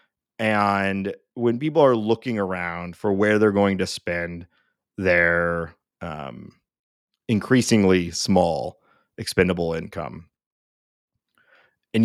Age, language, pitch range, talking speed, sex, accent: 30-49, English, 95-120 Hz, 95 wpm, male, American